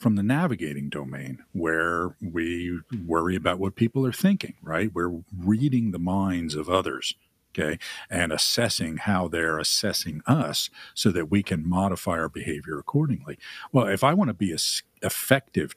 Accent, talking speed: American, 165 wpm